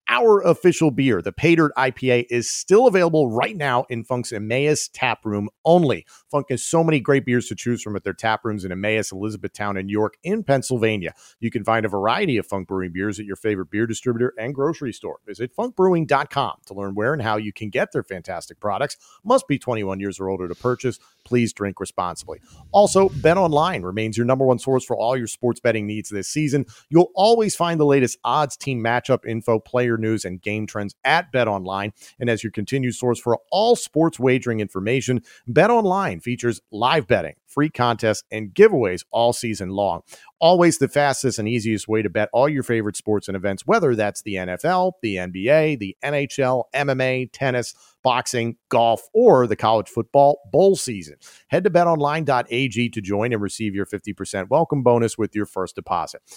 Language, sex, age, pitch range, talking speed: English, male, 40-59, 105-145 Hz, 190 wpm